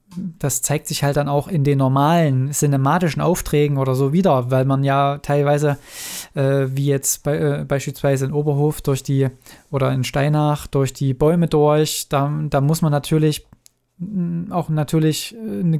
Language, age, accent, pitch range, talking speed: German, 20-39, German, 140-165 Hz, 165 wpm